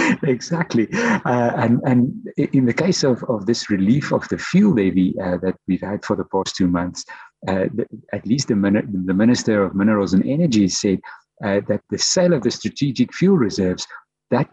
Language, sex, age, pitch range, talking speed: English, male, 50-69, 100-140 Hz, 195 wpm